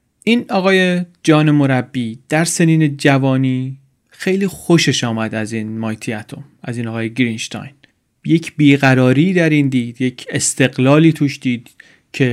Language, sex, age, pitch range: Persian, male, 30-49, 130-155 Hz